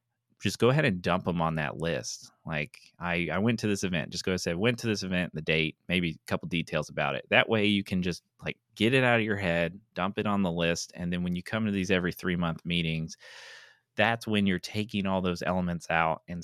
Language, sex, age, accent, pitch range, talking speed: English, male, 30-49, American, 85-105 Hz, 250 wpm